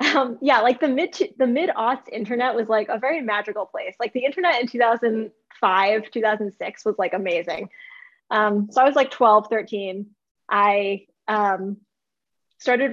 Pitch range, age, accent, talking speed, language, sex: 200-235 Hz, 20-39, American, 150 wpm, English, female